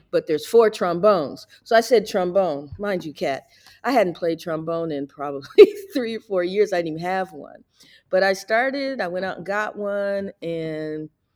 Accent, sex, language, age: American, female, English, 50-69